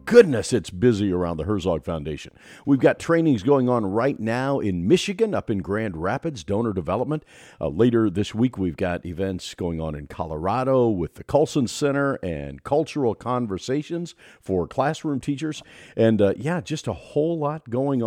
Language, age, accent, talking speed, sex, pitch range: English, 50-69, American, 170 wpm, male, 95-150 Hz